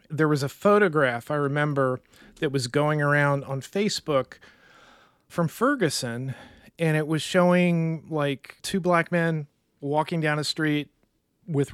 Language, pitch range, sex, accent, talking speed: English, 140-170 Hz, male, American, 140 wpm